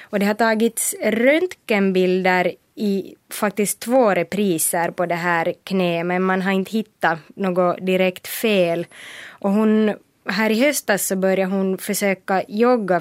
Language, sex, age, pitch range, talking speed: Swedish, female, 20-39, 180-210 Hz, 145 wpm